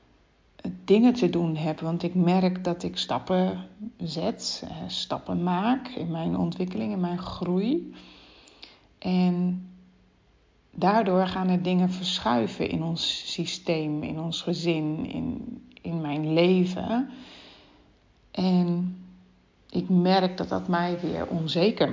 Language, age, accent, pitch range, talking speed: German, 30-49, Dutch, 165-185 Hz, 120 wpm